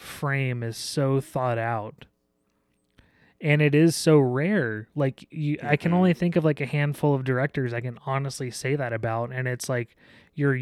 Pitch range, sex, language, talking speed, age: 115-150 Hz, male, English, 180 wpm, 20-39